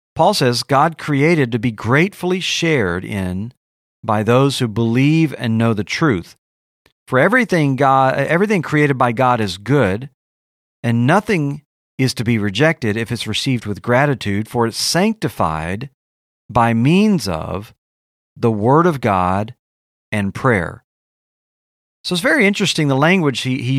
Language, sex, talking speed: English, male, 145 wpm